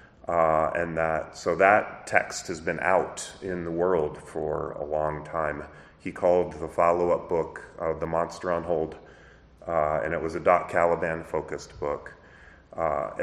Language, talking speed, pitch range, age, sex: English, 170 wpm, 80-90 Hz, 30-49, male